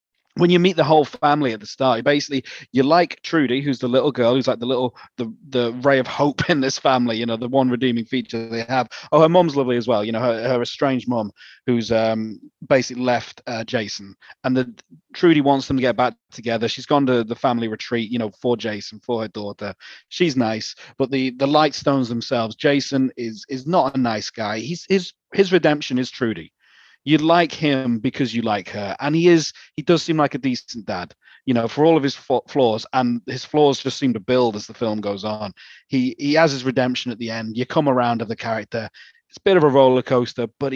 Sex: male